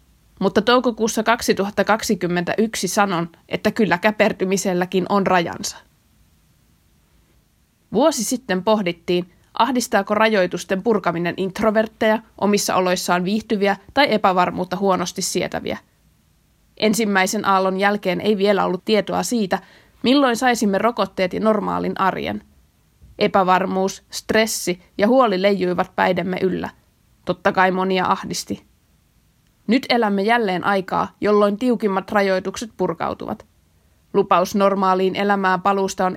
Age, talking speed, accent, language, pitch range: 20-39, 100 wpm, native, Finnish, 185-215 Hz